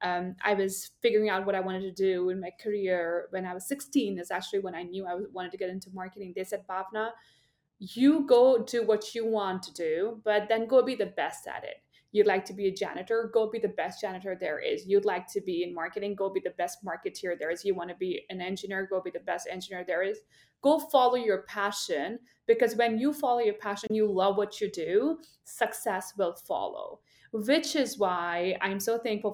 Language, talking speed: English, 225 wpm